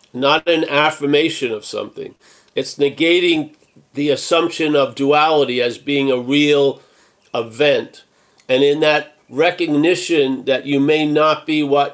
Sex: male